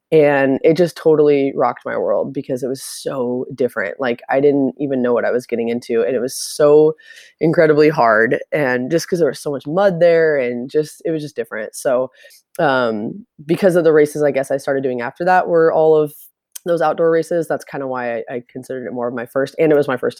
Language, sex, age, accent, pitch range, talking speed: English, female, 20-39, American, 135-170 Hz, 235 wpm